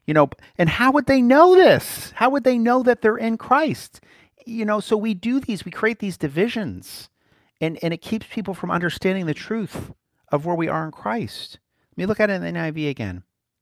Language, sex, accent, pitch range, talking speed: English, male, American, 155-220 Hz, 220 wpm